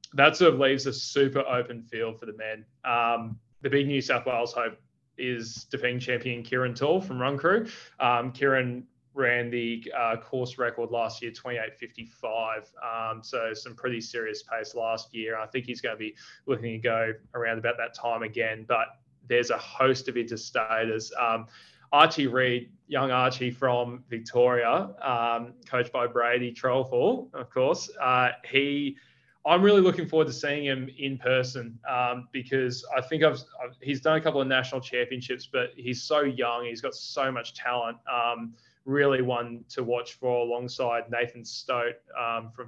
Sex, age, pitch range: male, 20-39, 115-130 Hz